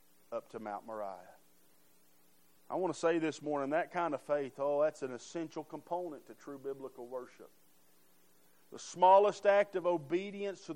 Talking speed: 160 wpm